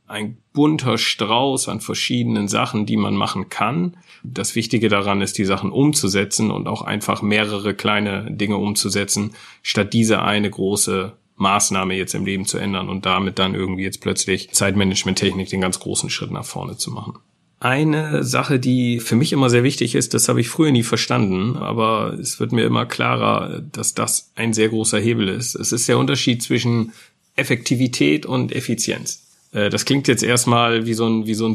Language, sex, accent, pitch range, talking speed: German, male, German, 100-125 Hz, 175 wpm